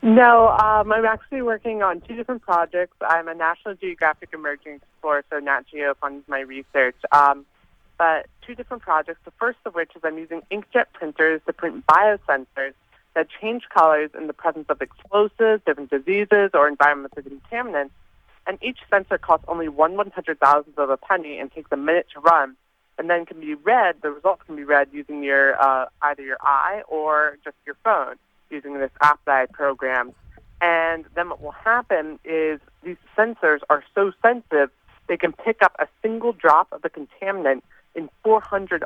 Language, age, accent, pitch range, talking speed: English, 20-39, American, 145-180 Hz, 180 wpm